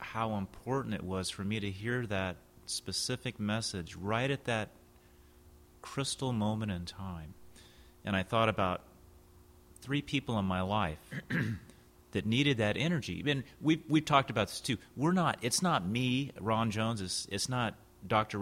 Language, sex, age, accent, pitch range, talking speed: English, male, 30-49, American, 90-110 Hz, 160 wpm